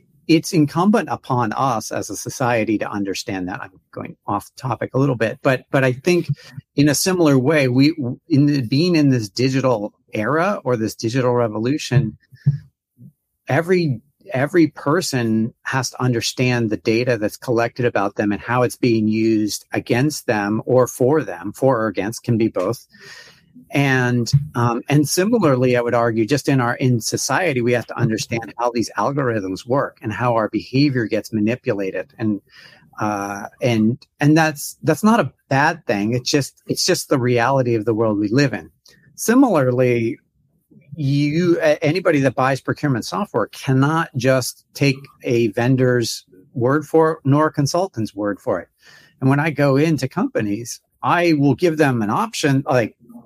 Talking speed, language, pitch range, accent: 165 wpm, English, 115-145 Hz, American